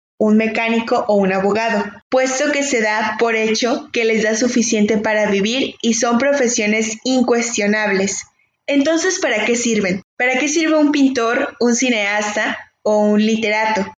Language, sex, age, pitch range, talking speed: Spanish, female, 20-39, 215-250 Hz, 150 wpm